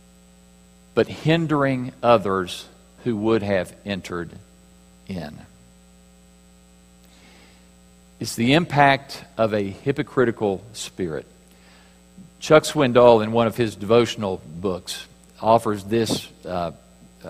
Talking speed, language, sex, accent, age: 90 wpm, English, male, American, 50-69